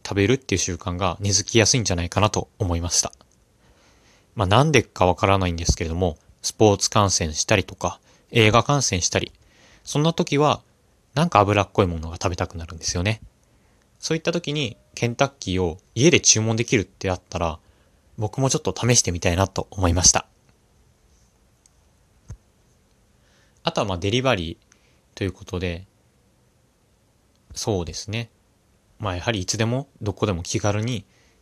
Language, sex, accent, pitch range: Japanese, male, native, 90-120 Hz